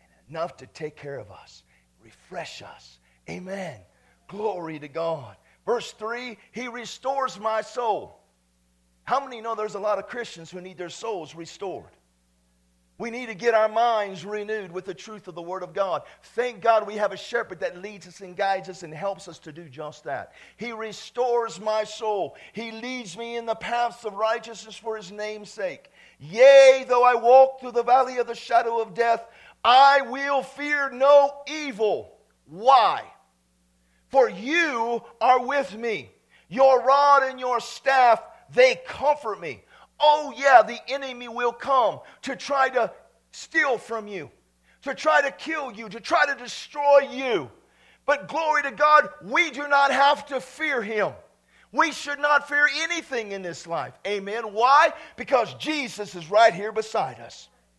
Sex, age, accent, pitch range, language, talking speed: male, 50-69, American, 195-270 Hz, English, 170 wpm